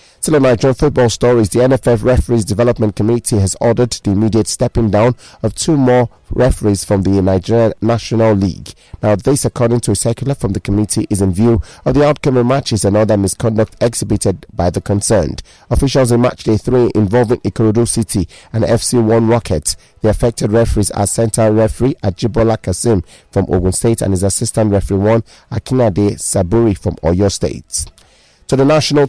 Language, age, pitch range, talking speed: English, 30-49, 105-125 Hz, 170 wpm